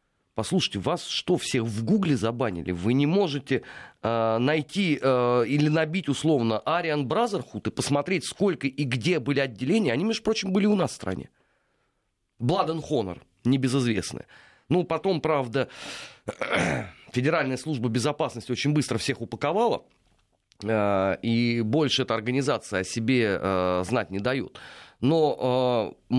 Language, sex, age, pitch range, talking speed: Russian, male, 30-49, 115-155 Hz, 135 wpm